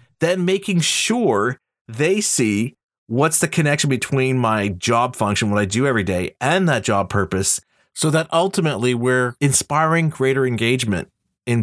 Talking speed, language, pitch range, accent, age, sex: 150 wpm, English, 115-160 Hz, American, 40-59, male